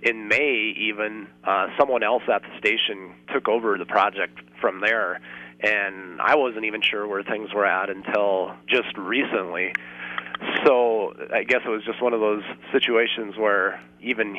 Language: English